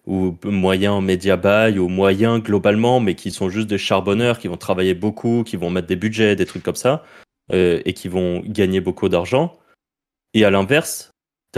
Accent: French